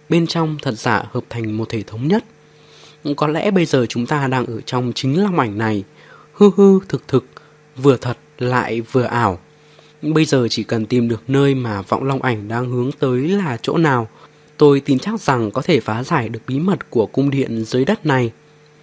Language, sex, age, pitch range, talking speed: Vietnamese, male, 20-39, 120-155 Hz, 210 wpm